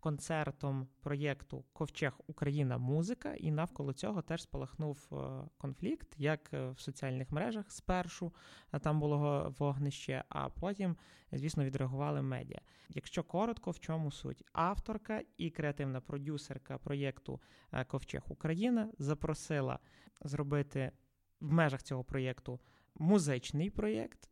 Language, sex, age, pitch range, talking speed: Ukrainian, male, 20-39, 135-165 Hz, 110 wpm